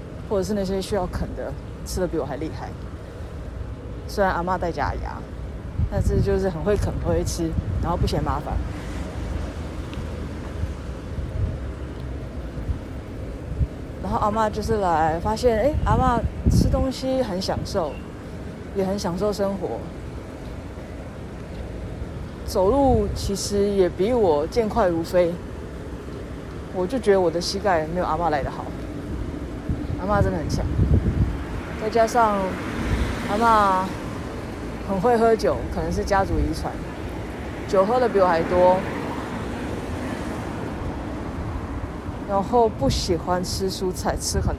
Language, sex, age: Chinese, female, 30-49